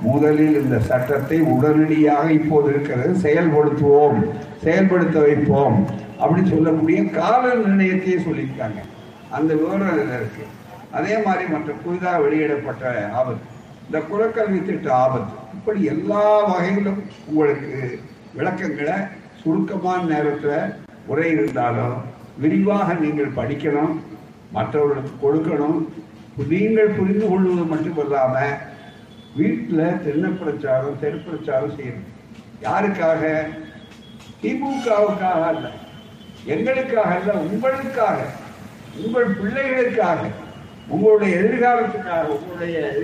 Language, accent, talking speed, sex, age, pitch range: Tamil, native, 85 wpm, male, 60-79, 150-210 Hz